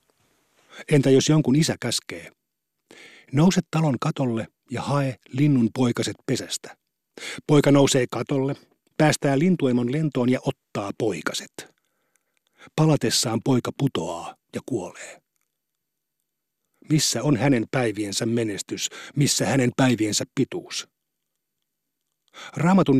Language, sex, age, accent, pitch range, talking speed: Finnish, male, 50-69, native, 120-150 Hz, 95 wpm